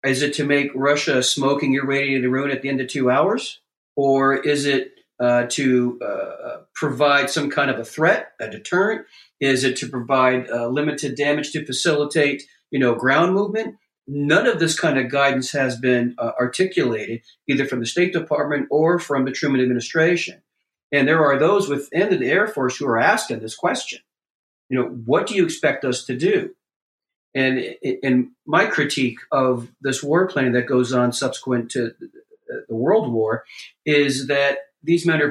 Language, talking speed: English, 180 wpm